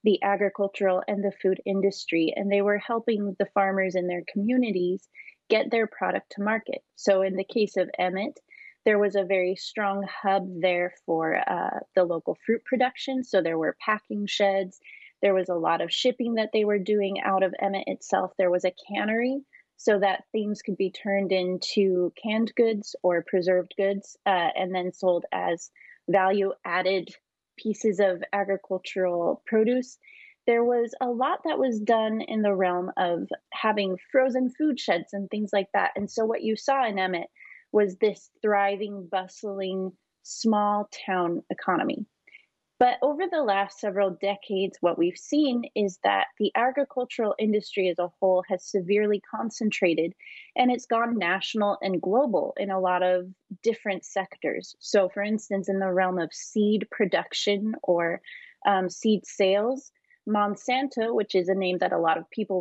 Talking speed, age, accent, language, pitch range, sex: 165 wpm, 30-49, American, English, 185-220 Hz, female